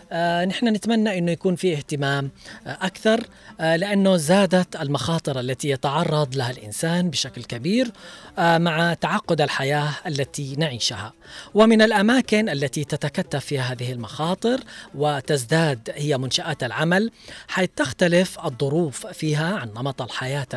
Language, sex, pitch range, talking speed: Arabic, female, 140-180 Hz, 115 wpm